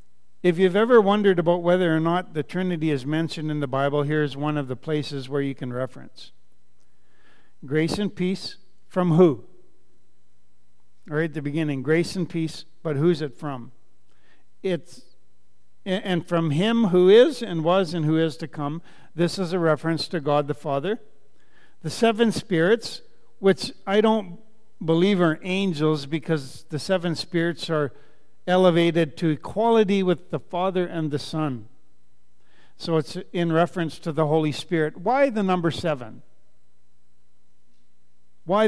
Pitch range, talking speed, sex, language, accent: 140-185 Hz, 150 wpm, male, English, American